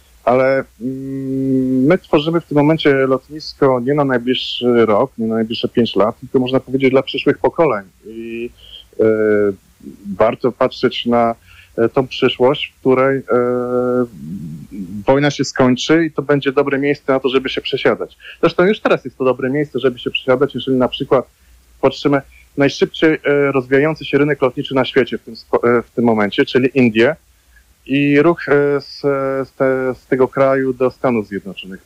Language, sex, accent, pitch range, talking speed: Polish, male, native, 125-145 Hz, 150 wpm